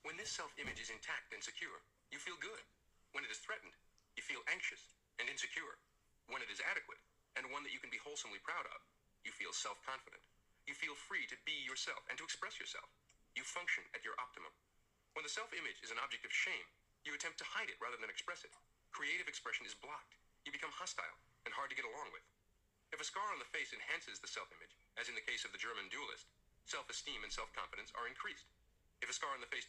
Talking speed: 220 wpm